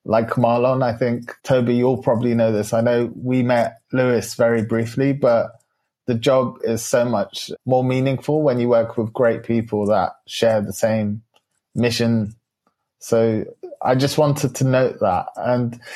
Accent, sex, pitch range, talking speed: British, male, 110-125 Hz, 160 wpm